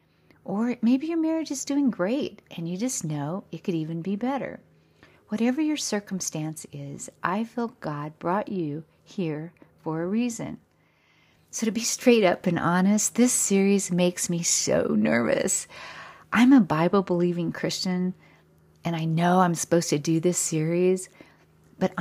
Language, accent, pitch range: English, American, 165-220 Hz